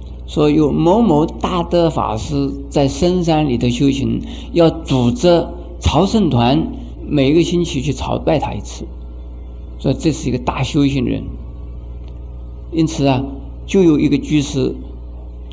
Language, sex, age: Chinese, male, 50-69